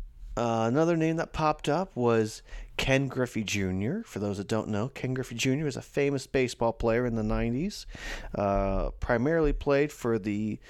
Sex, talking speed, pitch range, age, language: male, 175 wpm, 100-130 Hz, 40-59, English